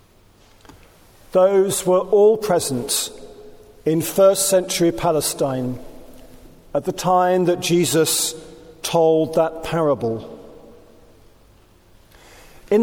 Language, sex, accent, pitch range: English, male, British, 160-200 Hz